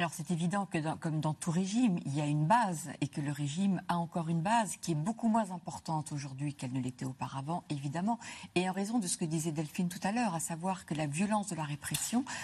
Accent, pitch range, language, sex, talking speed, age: French, 155-200 Hz, French, female, 250 wpm, 50-69